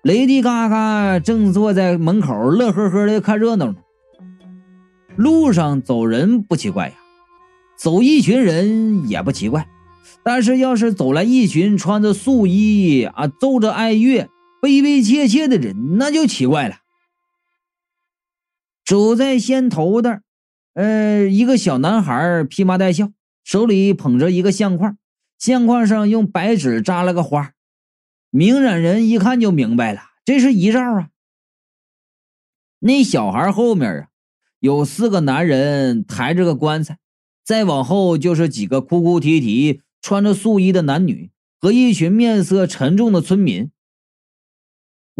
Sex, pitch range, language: male, 175-240 Hz, Chinese